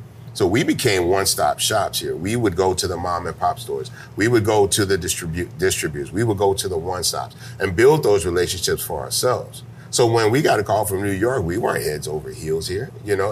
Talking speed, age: 230 wpm, 40-59